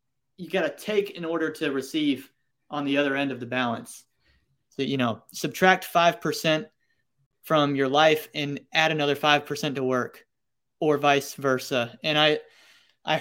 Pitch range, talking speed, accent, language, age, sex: 135-155 Hz, 160 wpm, American, English, 20-39, male